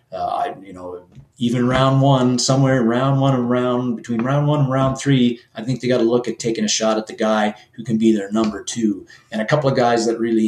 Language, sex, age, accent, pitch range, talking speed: English, male, 30-49, American, 110-130 Hz, 245 wpm